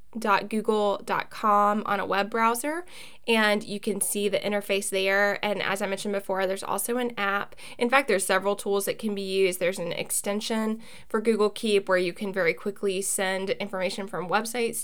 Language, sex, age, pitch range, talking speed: English, female, 20-39, 195-225 Hz, 185 wpm